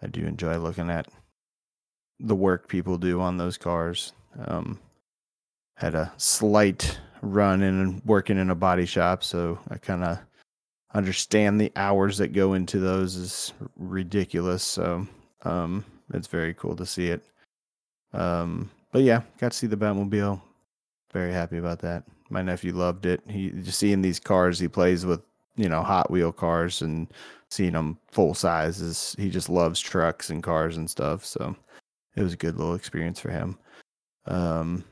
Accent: American